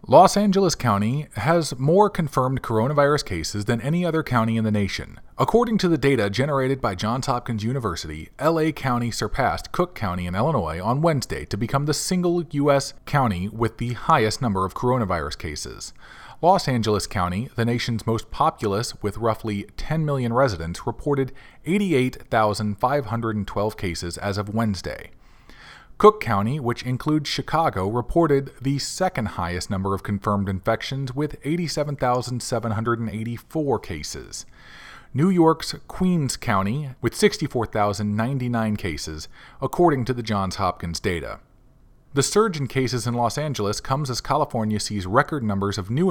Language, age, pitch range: English, 40-59, 105-145 Hz